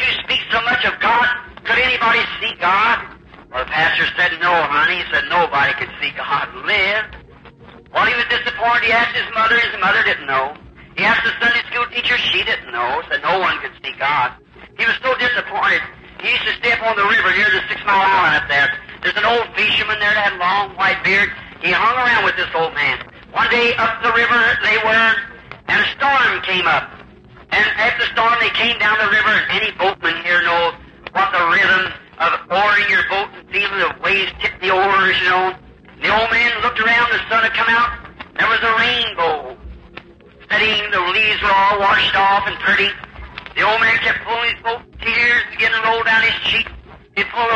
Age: 50-69